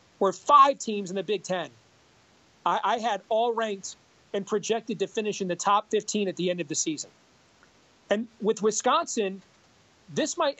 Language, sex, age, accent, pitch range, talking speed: English, male, 40-59, American, 195-250 Hz, 175 wpm